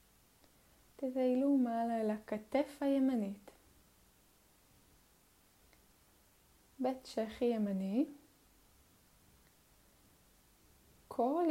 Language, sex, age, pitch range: Hebrew, female, 20-39, 200-250 Hz